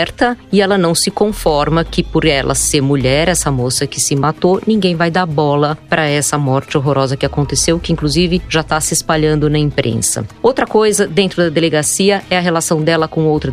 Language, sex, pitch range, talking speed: Portuguese, female, 145-175 Hz, 195 wpm